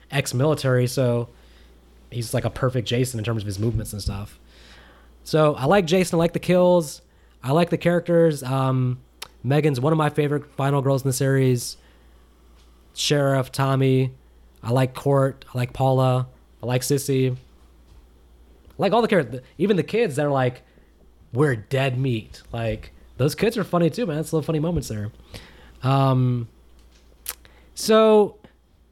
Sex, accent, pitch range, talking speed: male, American, 100-155 Hz, 160 wpm